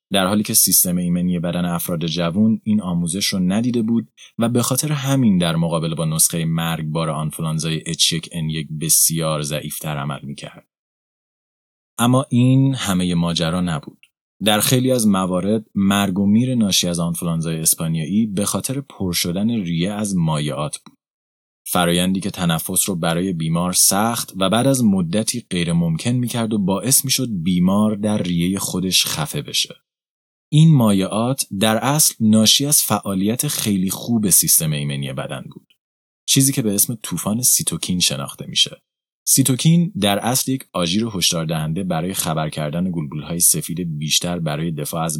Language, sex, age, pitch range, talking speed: Persian, male, 30-49, 85-130 Hz, 155 wpm